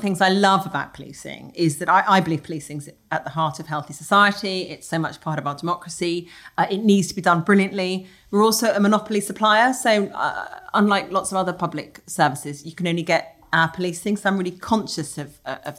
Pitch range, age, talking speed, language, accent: 155-205 Hz, 30-49, 220 wpm, English, British